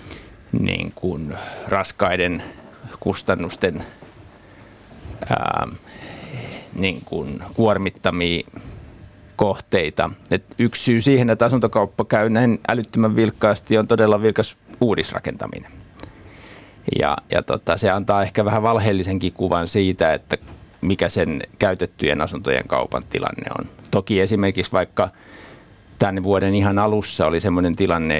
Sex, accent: male, native